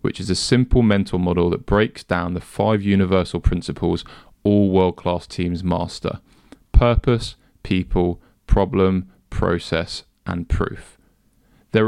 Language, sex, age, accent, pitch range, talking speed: English, male, 20-39, British, 90-110 Hz, 120 wpm